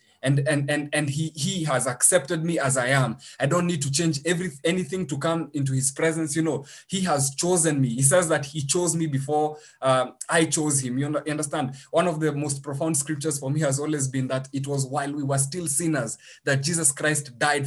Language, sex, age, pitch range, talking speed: English, male, 20-39, 135-165 Hz, 225 wpm